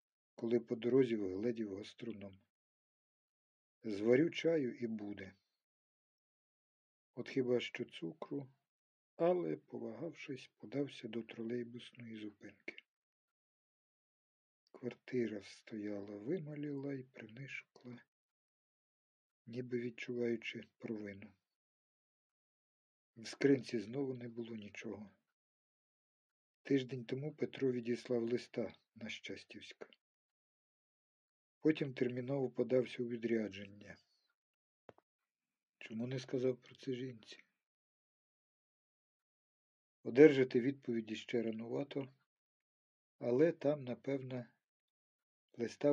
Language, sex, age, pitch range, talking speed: Ukrainian, male, 50-69, 110-130 Hz, 75 wpm